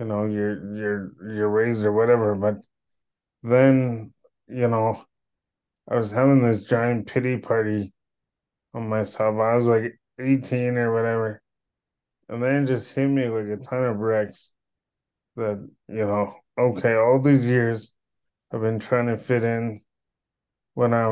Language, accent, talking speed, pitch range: English, American, 150 wpm, 105-125 Hz